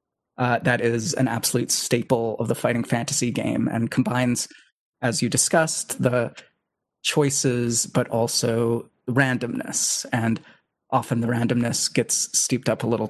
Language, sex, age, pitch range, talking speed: English, male, 30-49, 115-140 Hz, 135 wpm